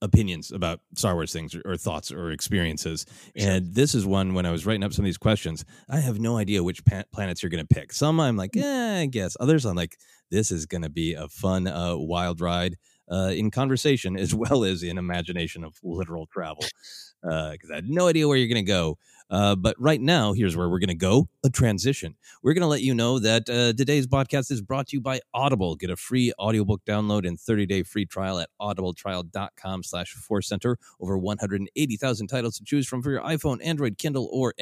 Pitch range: 90-130 Hz